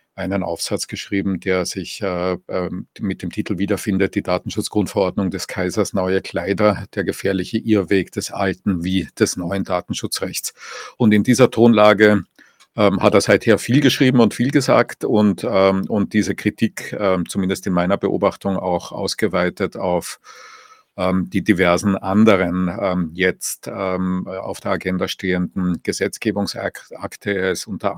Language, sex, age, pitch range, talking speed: English, male, 50-69, 90-105 Hz, 140 wpm